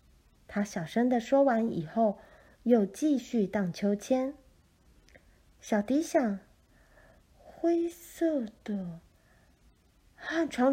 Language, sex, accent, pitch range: Chinese, female, native, 175-275 Hz